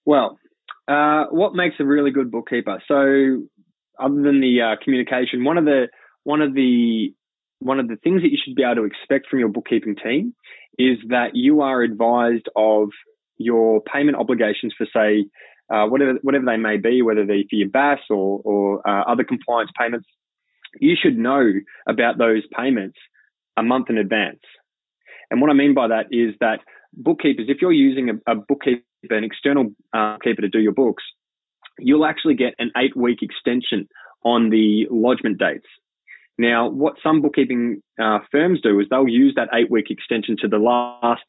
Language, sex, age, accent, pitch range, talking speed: English, male, 20-39, Australian, 110-140 Hz, 175 wpm